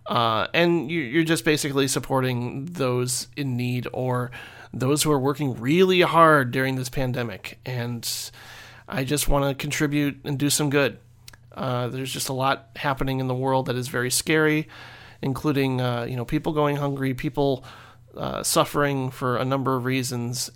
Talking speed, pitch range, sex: 170 wpm, 125-160 Hz, male